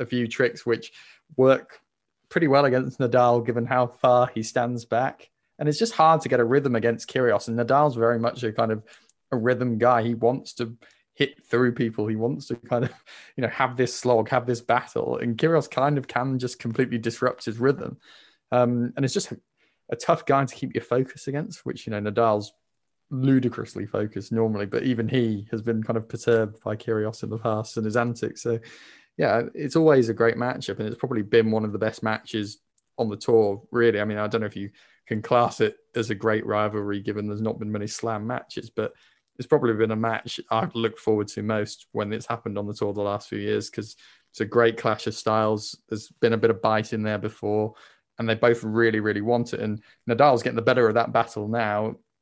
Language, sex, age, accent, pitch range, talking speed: English, male, 20-39, British, 110-125 Hz, 225 wpm